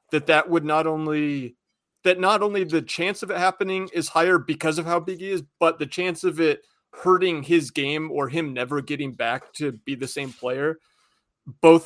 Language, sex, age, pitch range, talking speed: English, male, 30-49, 145-185 Hz, 200 wpm